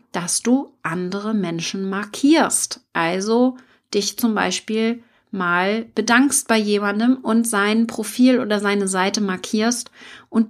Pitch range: 200-245 Hz